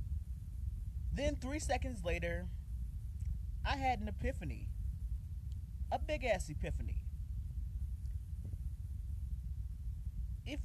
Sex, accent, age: male, American, 30-49